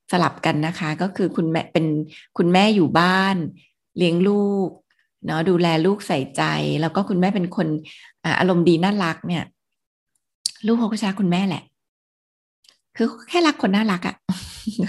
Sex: female